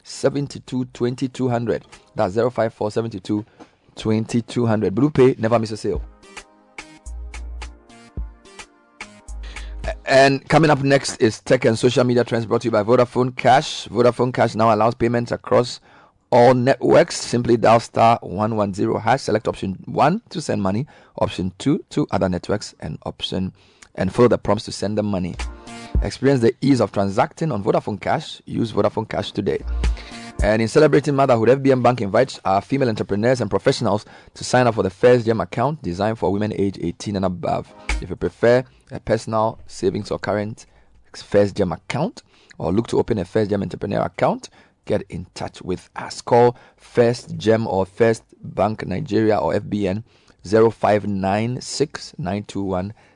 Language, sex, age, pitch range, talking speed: English, male, 30-49, 100-120 Hz, 165 wpm